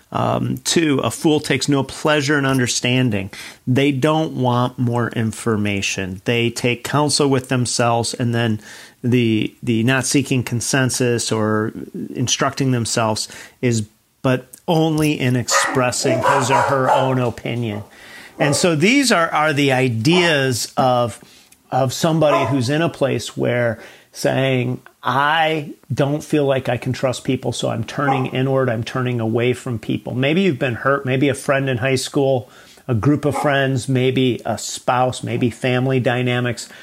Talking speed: 150 wpm